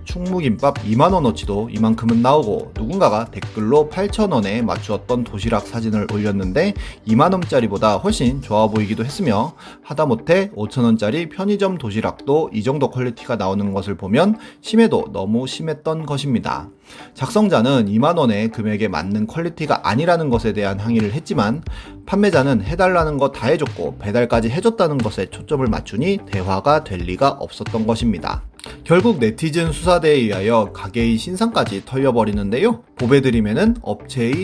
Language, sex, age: Korean, male, 30-49